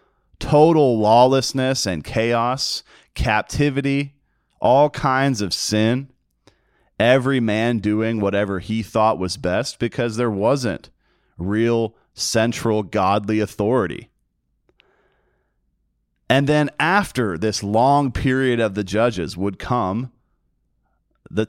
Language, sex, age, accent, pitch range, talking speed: English, male, 30-49, American, 100-130 Hz, 100 wpm